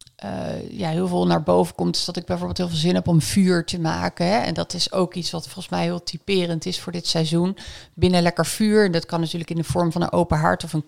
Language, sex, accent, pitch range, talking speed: Dutch, female, Dutch, 160-185 Hz, 275 wpm